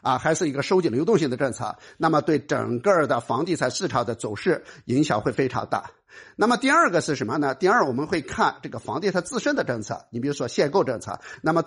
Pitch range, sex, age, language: 145-230 Hz, male, 50-69, Chinese